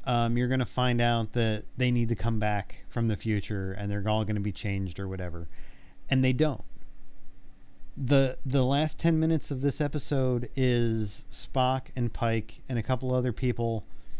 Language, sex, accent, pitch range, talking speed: English, male, American, 110-135 Hz, 185 wpm